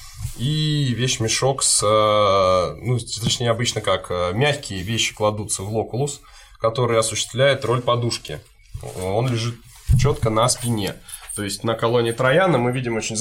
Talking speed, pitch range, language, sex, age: 125 wpm, 105-140 Hz, Russian, male, 20-39